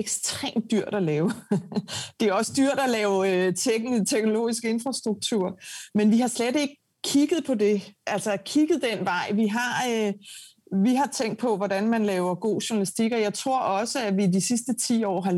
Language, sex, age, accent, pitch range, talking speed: Danish, female, 30-49, native, 190-230 Hz, 185 wpm